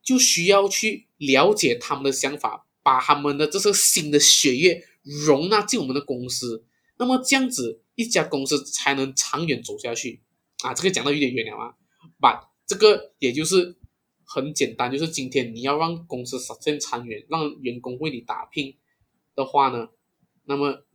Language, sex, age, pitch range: Chinese, male, 20-39, 130-170 Hz